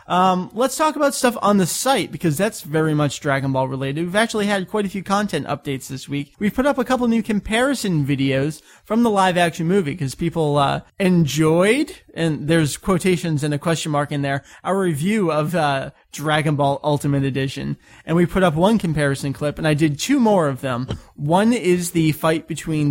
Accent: American